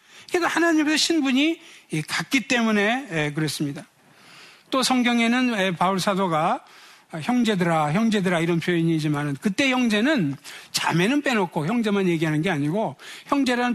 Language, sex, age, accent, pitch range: Korean, male, 60-79, native, 175-260 Hz